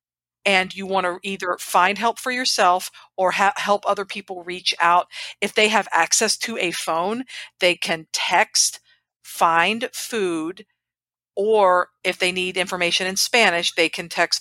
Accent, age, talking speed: American, 50-69, 155 wpm